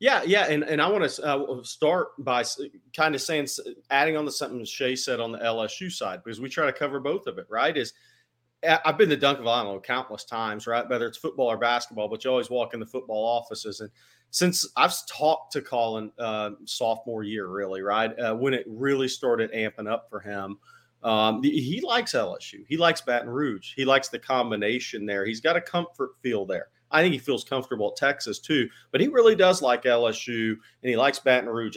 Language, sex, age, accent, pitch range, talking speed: English, male, 40-59, American, 115-140 Hz, 215 wpm